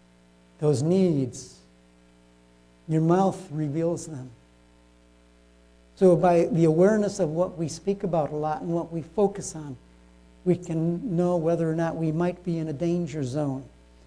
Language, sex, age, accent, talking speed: English, male, 60-79, American, 150 wpm